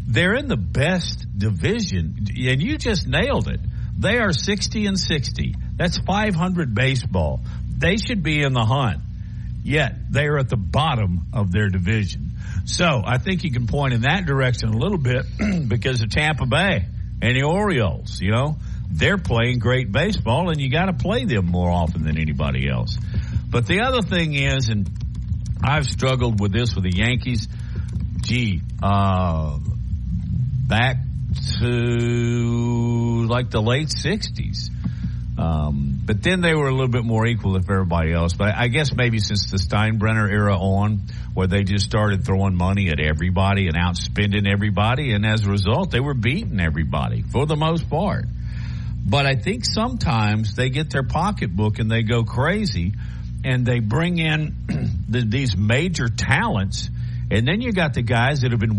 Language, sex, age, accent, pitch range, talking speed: English, male, 60-79, American, 100-130 Hz, 165 wpm